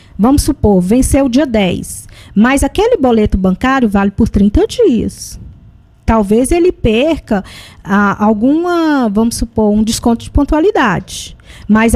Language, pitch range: Portuguese, 210-290 Hz